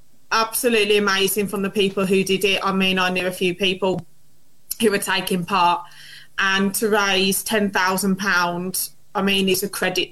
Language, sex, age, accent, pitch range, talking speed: English, female, 20-39, British, 190-220 Hz, 180 wpm